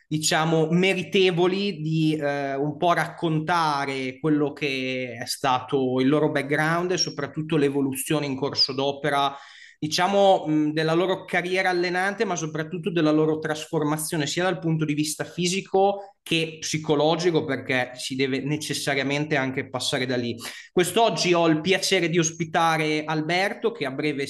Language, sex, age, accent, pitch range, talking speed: Italian, male, 20-39, native, 140-170 Hz, 140 wpm